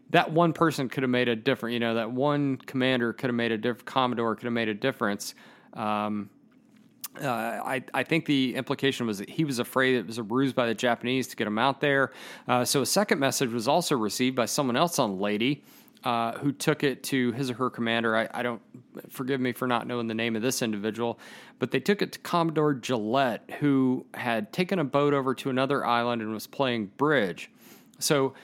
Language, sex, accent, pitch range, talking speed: English, male, American, 115-140 Hz, 220 wpm